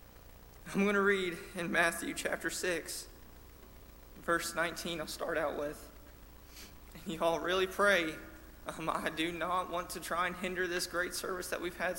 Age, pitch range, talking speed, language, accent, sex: 20-39, 145-180 Hz, 165 wpm, English, American, male